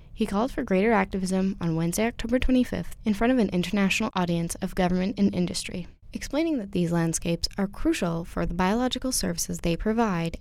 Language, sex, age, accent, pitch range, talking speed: English, female, 10-29, American, 170-230 Hz, 180 wpm